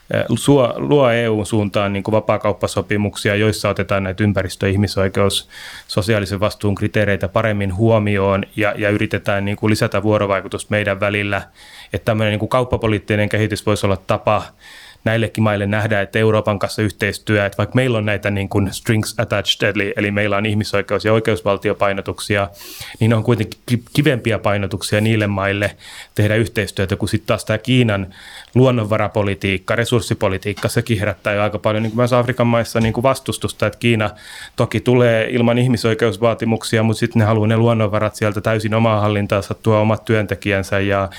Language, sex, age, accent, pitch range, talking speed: Finnish, male, 30-49, native, 100-115 Hz, 150 wpm